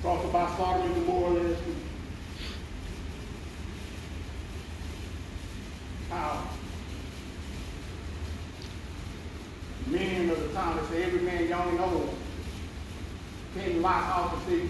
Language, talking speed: English, 90 wpm